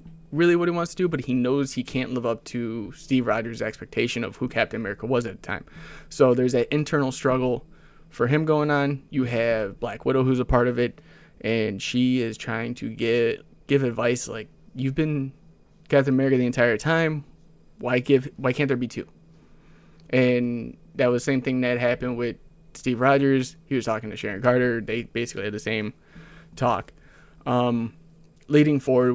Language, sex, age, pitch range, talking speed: English, male, 20-39, 120-150 Hz, 190 wpm